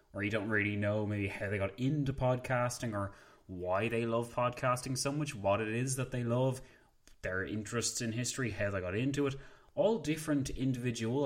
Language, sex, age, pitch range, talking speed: English, male, 20-39, 105-130 Hz, 190 wpm